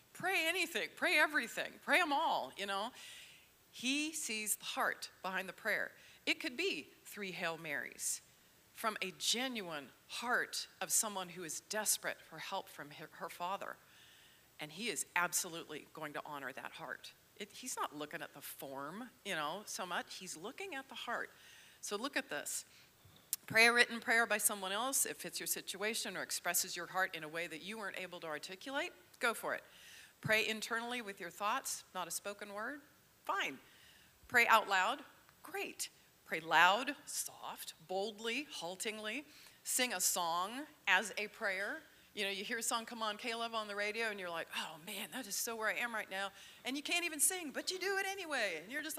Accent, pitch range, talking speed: American, 190-290 Hz, 190 wpm